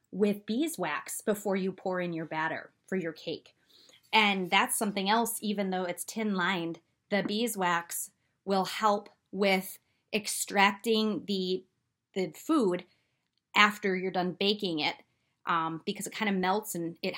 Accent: American